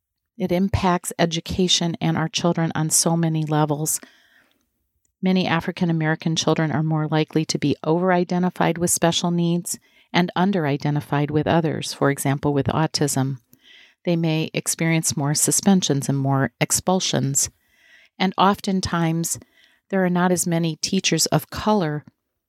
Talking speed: 130 wpm